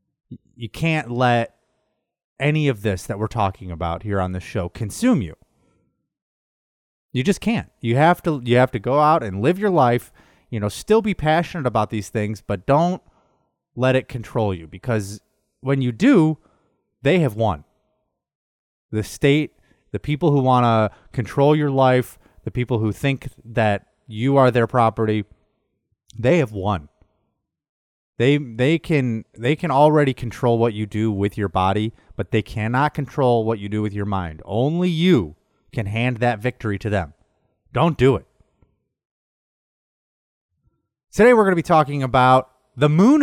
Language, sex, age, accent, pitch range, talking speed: English, male, 30-49, American, 110-155 Hz, 160 wpm